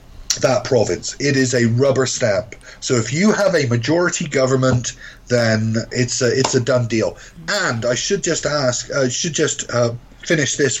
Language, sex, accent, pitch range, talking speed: English, male, British, 120-150 Hz, 170 wpm